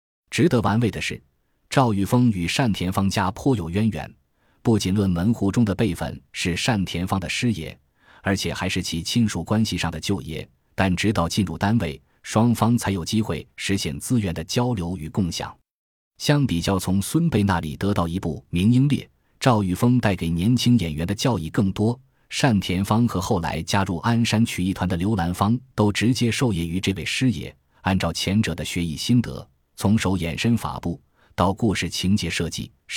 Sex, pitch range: male, 85-115 Hz